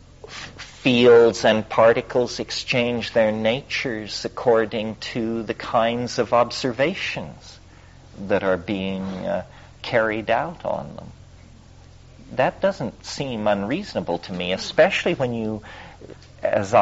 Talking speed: 105 wpm